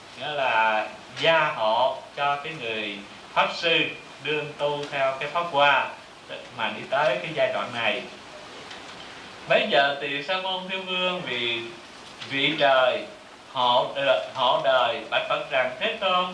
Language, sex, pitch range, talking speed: Vietnamese, male, 135-185 Hz, 150 wpm